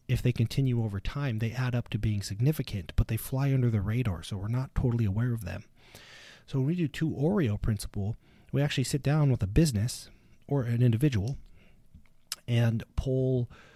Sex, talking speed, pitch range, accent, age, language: male, 190 wpm, 110-135 Hz, American, 30-49, English